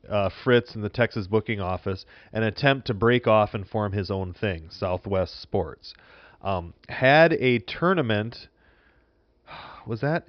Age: 30-49